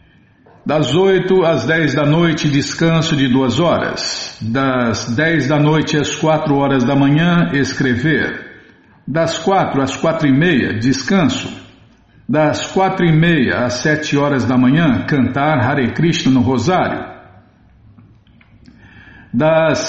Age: 60-79